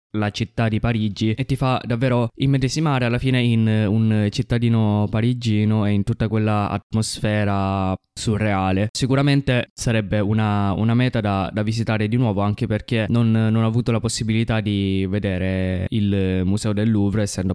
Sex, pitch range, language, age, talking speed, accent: male, 95-120 Hz, Italian, 20-39, 155 wpm, native